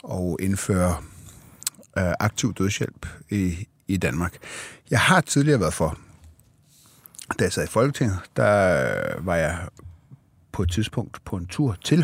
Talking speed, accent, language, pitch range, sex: 140 wpm, native, Danish, 95-120 Hz, male